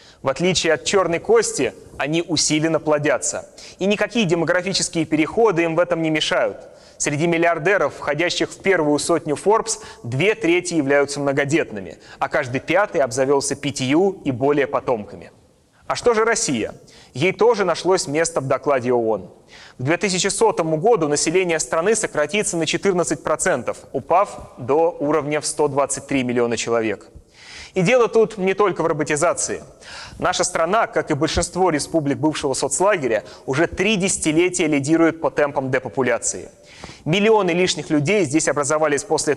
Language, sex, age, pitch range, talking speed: Russian, male, 30-49, 145-185 Hz, 135 wpm